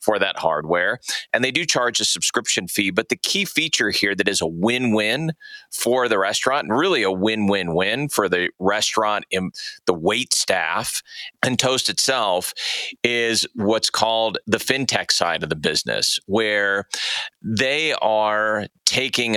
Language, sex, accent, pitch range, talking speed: English, male, American, 100-130 Hz, 150 wpm